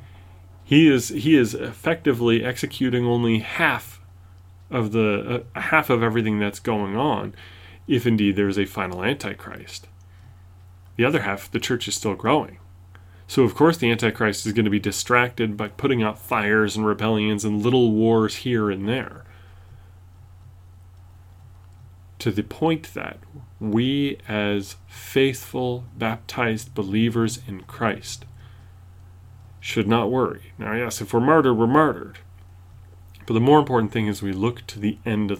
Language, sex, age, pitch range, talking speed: English, male, 30-49, 95-120 Hz, 145 wpm